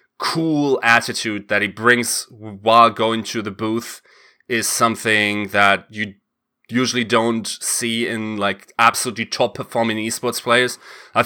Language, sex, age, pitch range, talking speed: English, male, 20-39, 110-140 Hz, 135 wpm